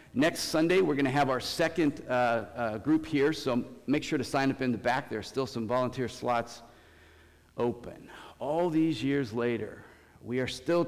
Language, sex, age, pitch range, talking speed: English, male, 50-69, 120-170 Hz, 195 wpm